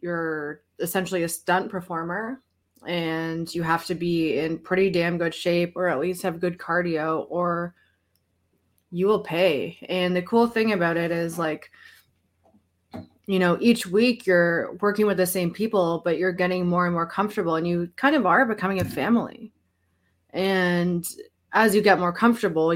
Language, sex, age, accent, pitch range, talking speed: English, female, 20-39, American, 165-190 Hz, 170 wpm